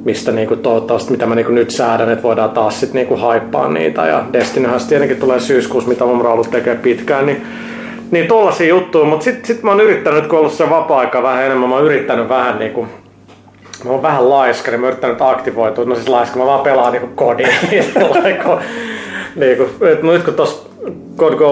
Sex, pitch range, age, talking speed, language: male, 115-160 Hz, 30-49, 175 wpm, Finnish